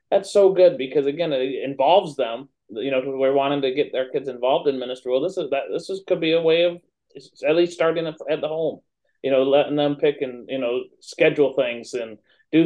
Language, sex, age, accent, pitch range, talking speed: English, male, 30-49, American, 130-175 Hz, 230 wpm